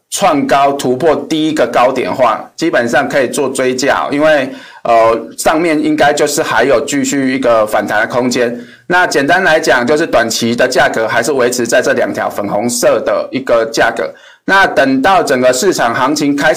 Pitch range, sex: 120-170 Hz, male